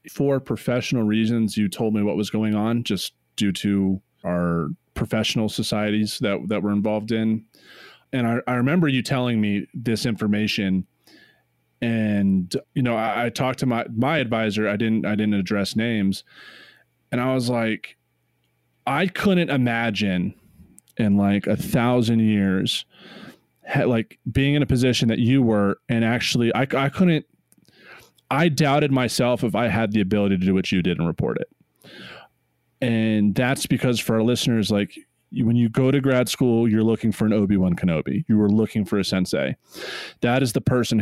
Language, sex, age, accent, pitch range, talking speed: English, male, 20-39, American, 105-130 Hz, 170 wpm